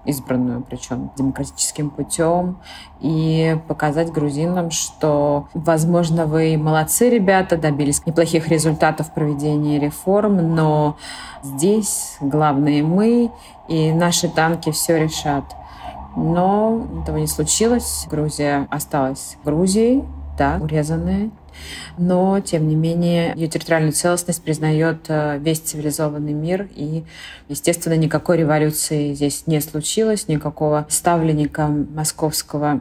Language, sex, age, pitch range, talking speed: Russian, female, 30-49, 150-180 Hz, 105 wpm